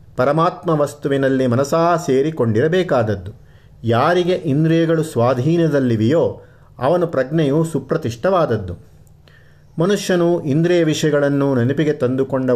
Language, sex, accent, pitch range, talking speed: Kannada, male, native, 125-165 Hz, 70 wpm